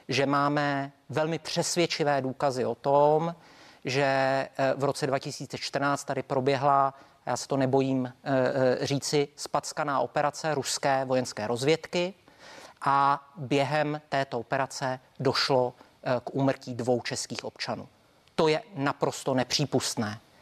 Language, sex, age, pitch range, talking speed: Czech, male, 40-59, 130-155 Hz, 110 wpm